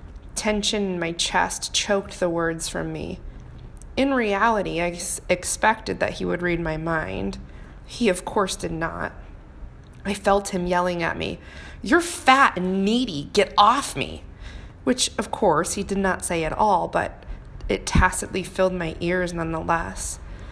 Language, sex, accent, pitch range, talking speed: English, female, American, 165-205 Hz, 155 wpm